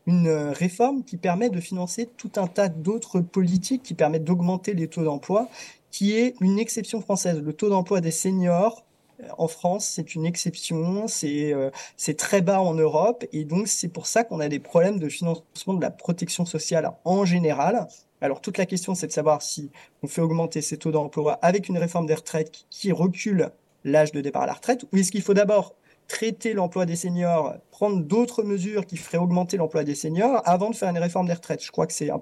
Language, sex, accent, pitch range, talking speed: French, male, French, 155-190 Hz, 210 wpm